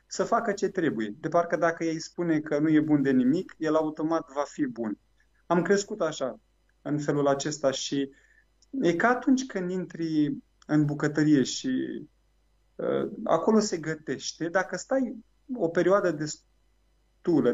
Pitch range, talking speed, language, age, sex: 150-190 Hz, 150 wpm, Romanian, 30-49, male